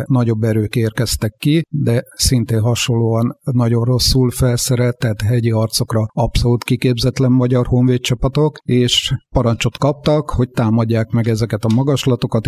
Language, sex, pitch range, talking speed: Hungarian, male, 115-130 Hz, 120 wpm